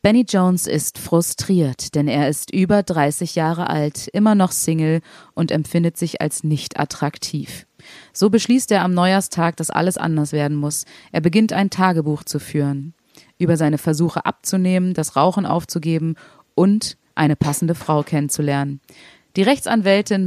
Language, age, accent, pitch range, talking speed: German, 30-49, German, 155-190 Hz, 150 wpm